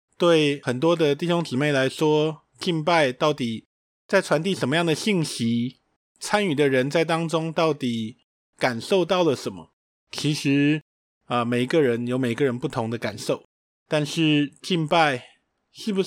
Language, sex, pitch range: Chinese, male, 130-170 Hz